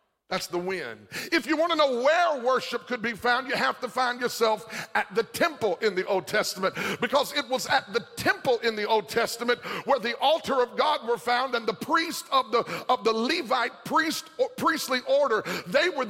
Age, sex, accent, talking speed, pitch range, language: 50-69, male, American, 210 wpm, 225-280 Hz, English